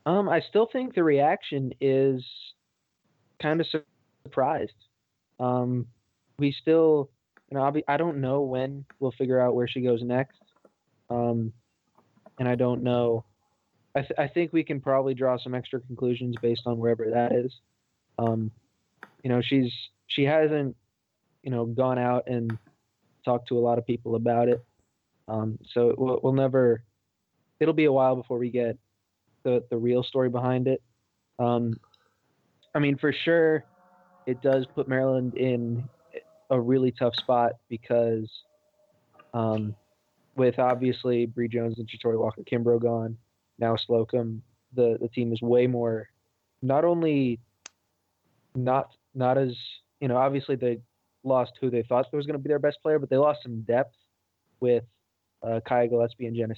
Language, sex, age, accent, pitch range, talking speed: English, male, 20-39, American, 115-135 Hz, 155 wpm